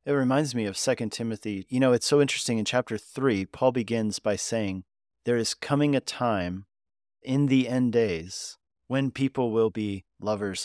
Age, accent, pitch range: 40-59, American, 95-125 Hz